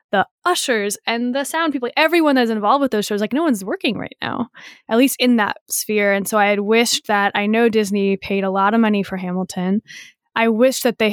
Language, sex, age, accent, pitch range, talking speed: English, female, 10-29, American, 195-250 Hz, 230 wpm